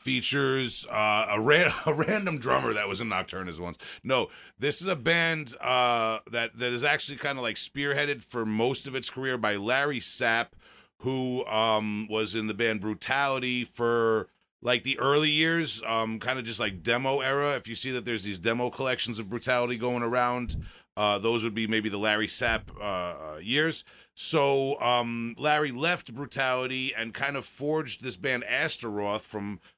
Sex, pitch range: male, 110-135 Hz